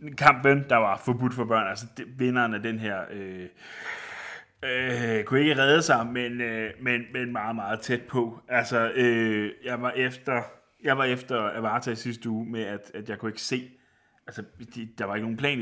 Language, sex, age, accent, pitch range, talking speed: Danish, male, 30-49, native, 105-125 Hz, 190 wpm